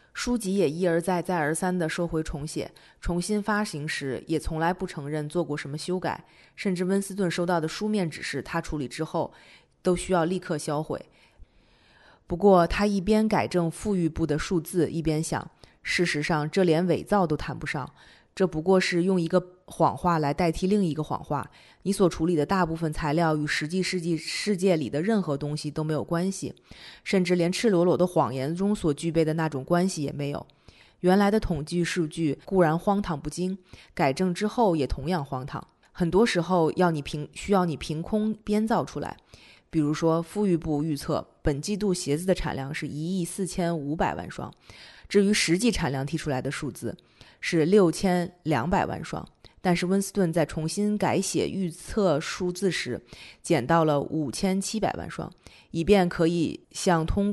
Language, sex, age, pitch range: Chinese, female, 20-39, 155-190 Hz